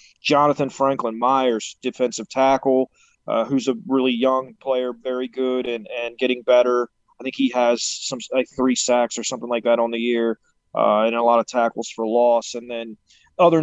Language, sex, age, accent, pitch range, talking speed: English, male, 30-49, American, 120-140 Hz, 190 wpm